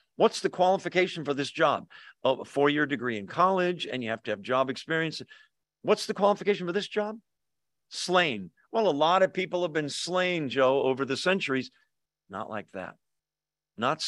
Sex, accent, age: male, American, 50-69